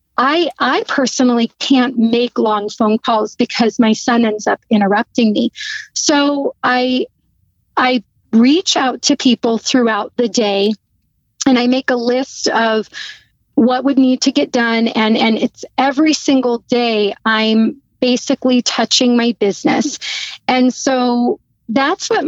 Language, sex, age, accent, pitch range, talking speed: English, female, 40-59, American, 225-265 Hz, 140 wpm